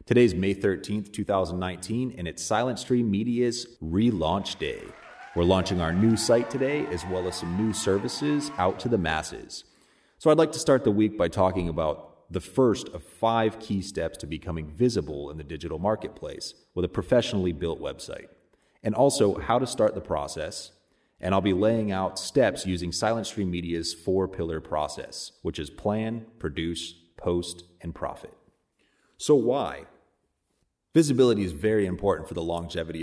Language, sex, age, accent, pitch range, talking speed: English, male, 30-49, American, 90-115 Hz, 165 wpm